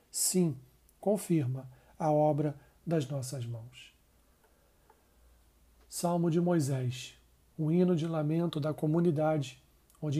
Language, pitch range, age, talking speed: Portuguese, 140-170 Hz, 40-59, 100 wpm